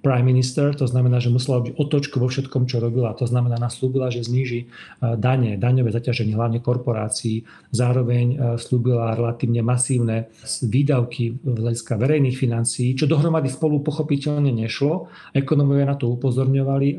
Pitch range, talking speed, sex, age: 120-135 Hz, 140 wpm, male, 40-59